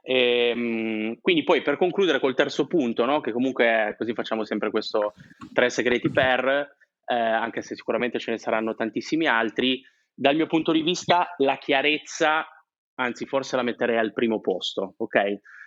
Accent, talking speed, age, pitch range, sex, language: native, 155 wpm, 20-39, 115-150 Hz, male, Italian